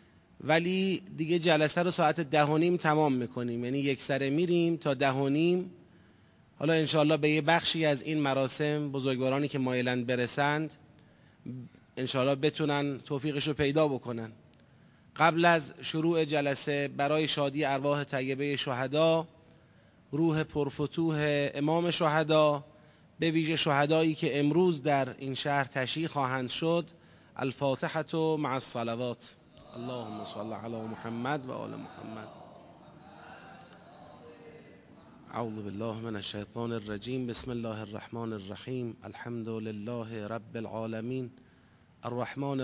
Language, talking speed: Persian, 115 wpm